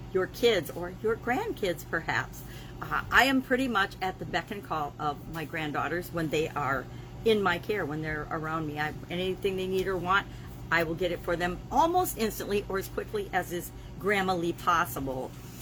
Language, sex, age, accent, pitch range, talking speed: English, female, 50-69, American, 165-200 Hz, 200 wpm